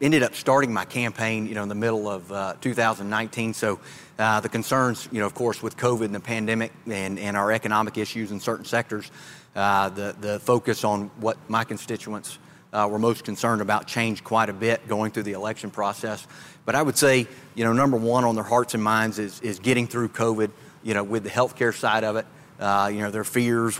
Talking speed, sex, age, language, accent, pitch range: 220 wpm, male, 30-49, English, American, 105-120 Hz